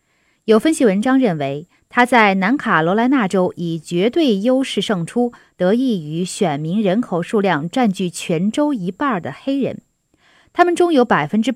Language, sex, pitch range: Chinese, female, 170-245 Hz